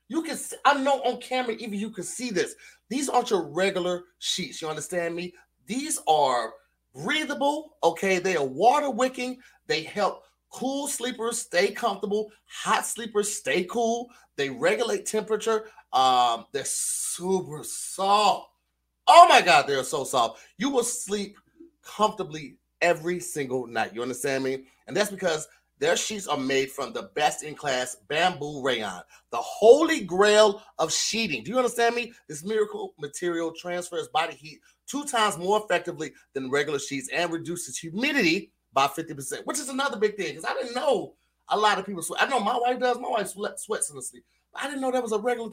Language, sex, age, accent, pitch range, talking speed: English, male, 30-49, American, 165-250 Hz, 175 wpm